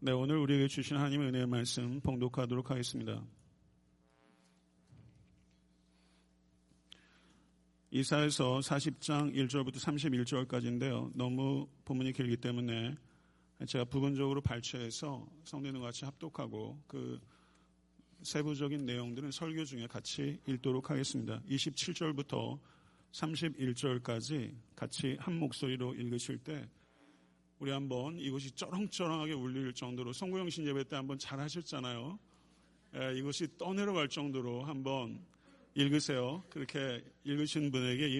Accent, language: native, Korean